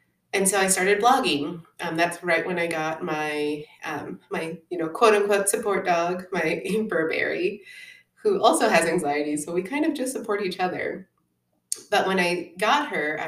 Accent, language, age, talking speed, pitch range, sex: American, English, 30-49, 180 wpm, 160-205 Hz, female